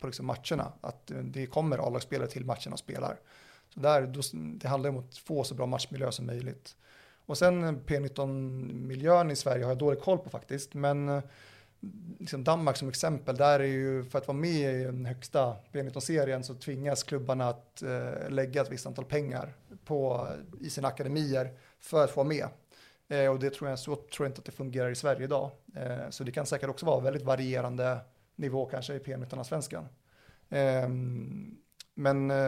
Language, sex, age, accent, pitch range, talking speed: Swedish, male, 30-49, native, 130-145 Hz, 185 wpm